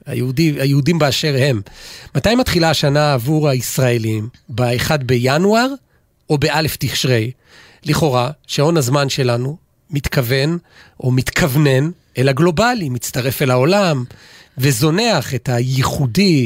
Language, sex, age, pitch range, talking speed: Hebrew, male, 40-59, 130-170 Hz, 105 wpm